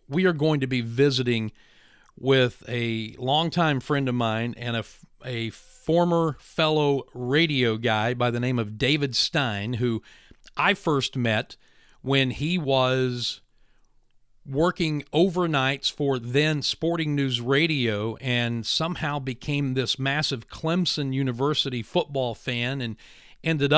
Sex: male